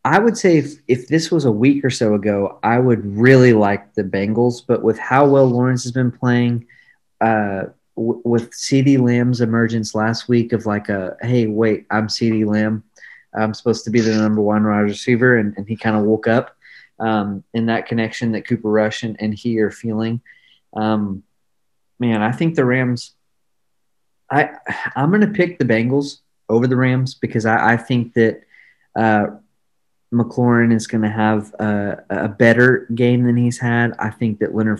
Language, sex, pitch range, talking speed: English, male, 105-120 Hz, 180 wpm